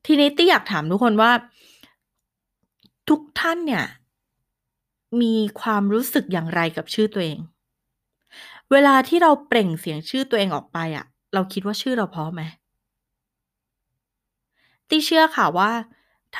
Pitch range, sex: 175-245 Hz, female